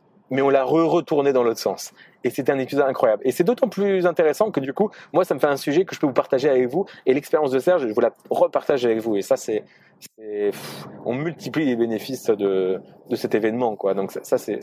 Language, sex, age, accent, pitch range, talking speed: French, male, 30-49, French, 120-160 Hz, 245 wpm